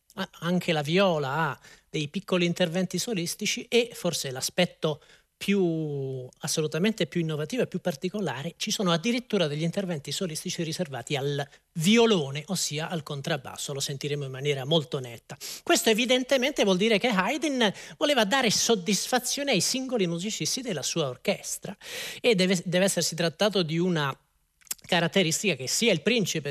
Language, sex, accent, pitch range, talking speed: Italian, male, native, 160-215 Hz, 145 wpm